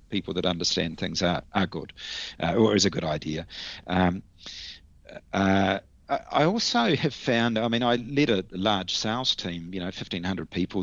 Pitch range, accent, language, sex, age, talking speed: 85-105 Hz, Australian, English, male, 40-59, 170 wpm